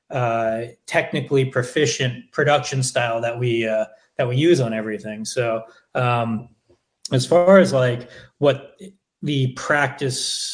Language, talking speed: English, 125 wpm